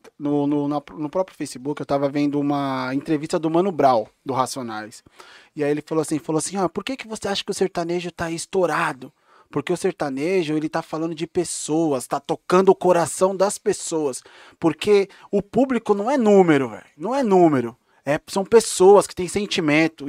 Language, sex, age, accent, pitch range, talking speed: Portuguese, male, 20-39, Brazilian, 150-220 Hz, 180 wpm